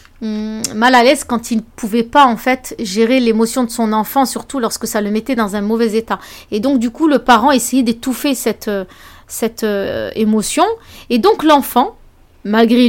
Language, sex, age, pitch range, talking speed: French, female, 30-49, 210-270 Hz, 185 wpm